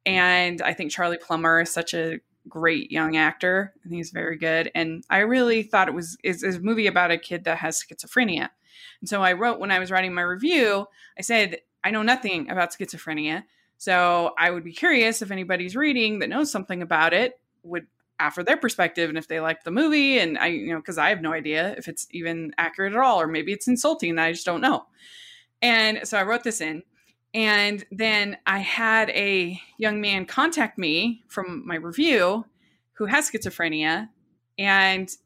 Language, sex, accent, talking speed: English, female, American, 200 wpm